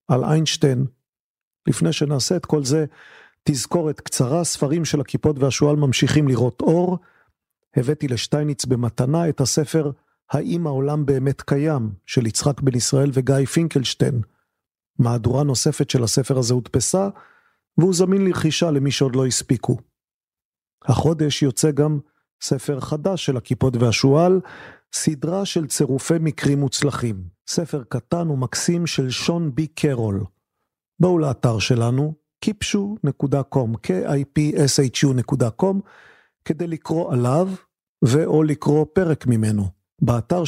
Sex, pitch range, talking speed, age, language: male, 130-160 Hz, 115 wpm, 40-59, Hebrew